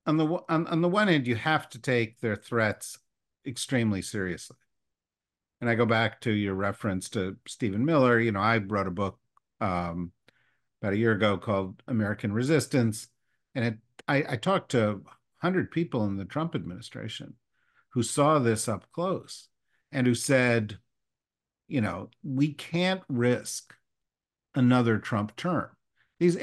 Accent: American